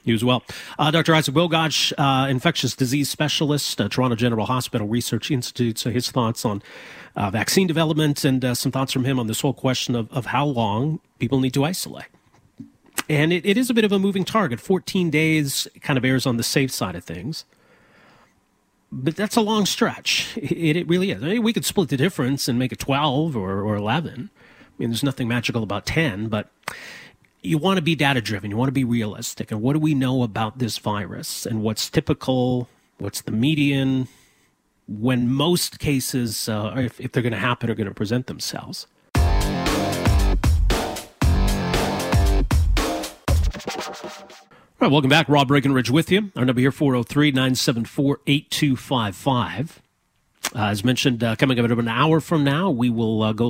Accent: American